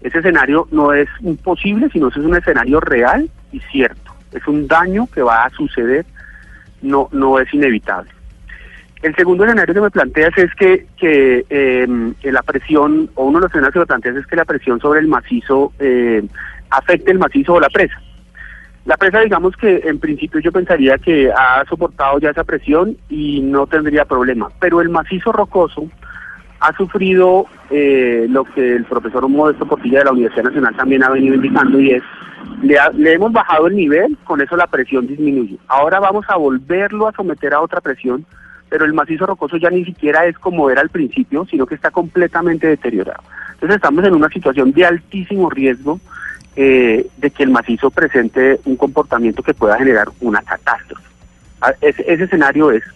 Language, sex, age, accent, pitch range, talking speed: Spanish, male, 30-49, Colombian, 135-180 Hz, 185 wpm